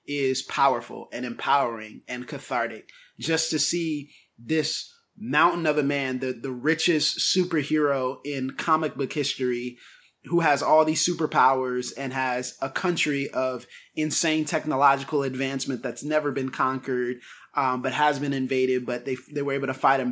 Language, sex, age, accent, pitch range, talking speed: English, male, 20-39, American, 130-155 Hz, 155 wpm